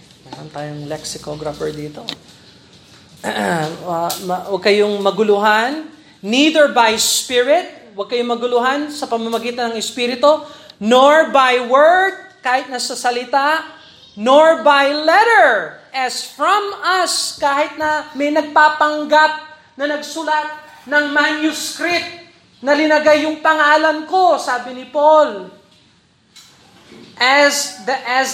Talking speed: 105 wpm